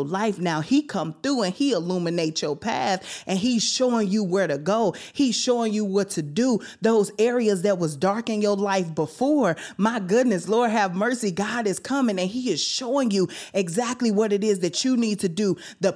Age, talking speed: 30-49, 205 wpm